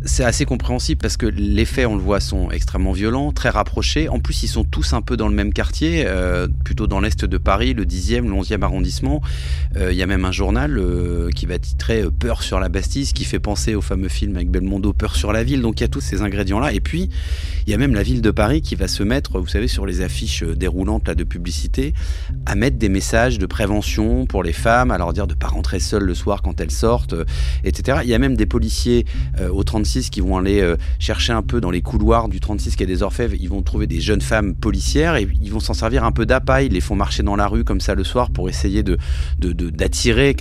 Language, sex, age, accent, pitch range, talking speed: French, male, 30-49, French, 70-100 Hz, 265 wpm